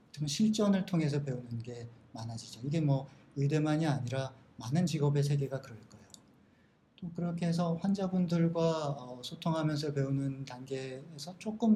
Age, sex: 40-59, male